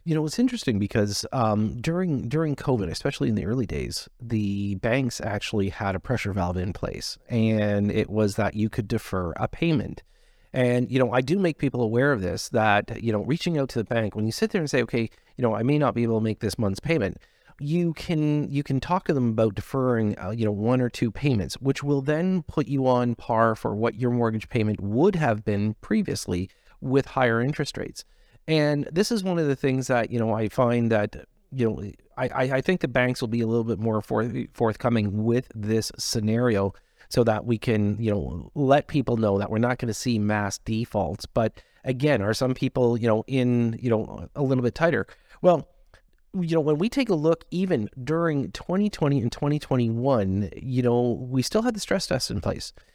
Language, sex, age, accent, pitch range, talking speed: English, male, 40-59, American, 110-145 Hz, 215 wpm